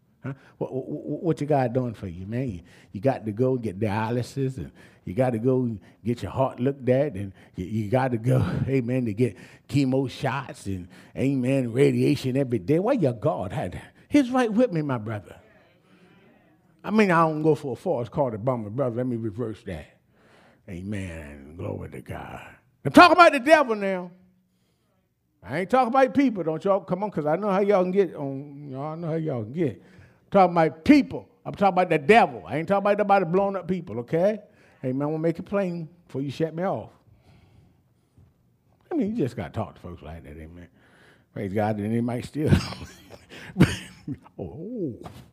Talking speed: 200 wpm